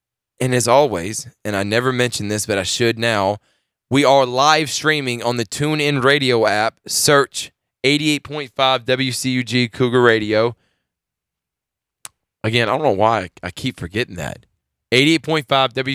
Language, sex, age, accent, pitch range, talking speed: English, male, 20-39, American, 115-135 Hz, 135 wpm